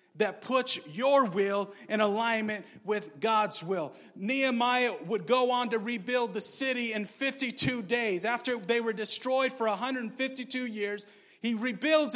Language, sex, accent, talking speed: English, male, American, 145 wpm